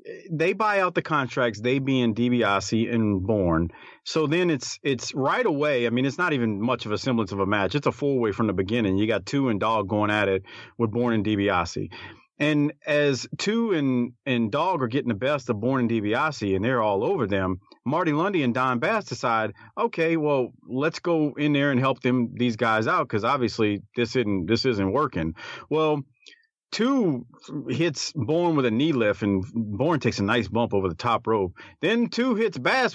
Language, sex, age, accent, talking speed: English, male, 40-59, American, 205 wpm